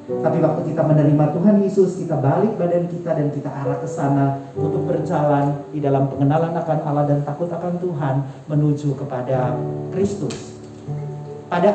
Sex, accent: male, native